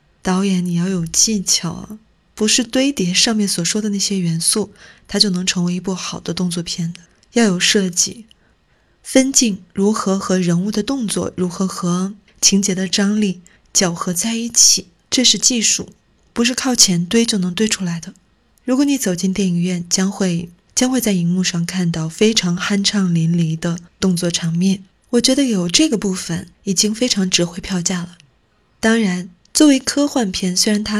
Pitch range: 180-220 Hz